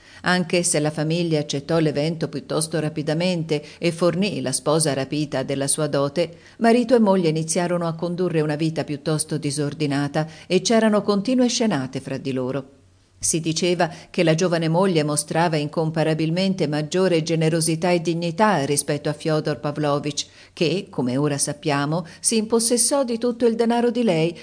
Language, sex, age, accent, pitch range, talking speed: Italian, female, 50-69, native, 150-185 Hz, 150 wpm